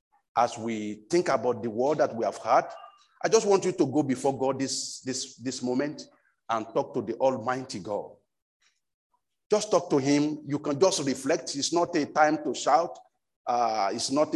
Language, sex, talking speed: English, male, 190 wpm